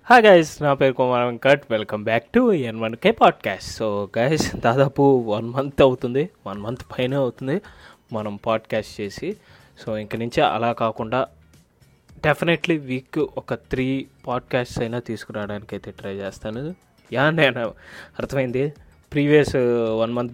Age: 20-39